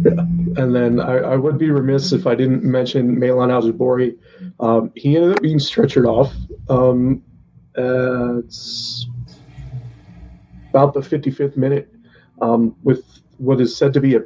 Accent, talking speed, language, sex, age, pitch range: American, 145 wpm, English, male, 30-49, 120-135 Hz